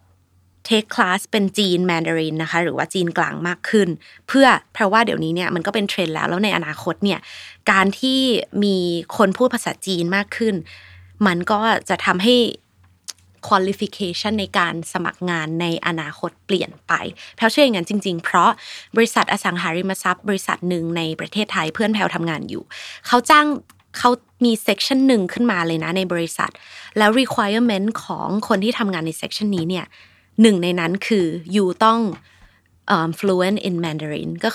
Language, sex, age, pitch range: Thai, female, 20-39, 170-210 Hz